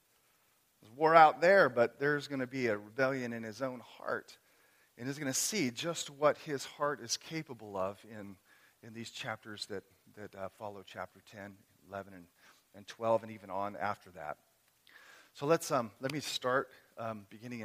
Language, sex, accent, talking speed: English, male, American, 175 wpm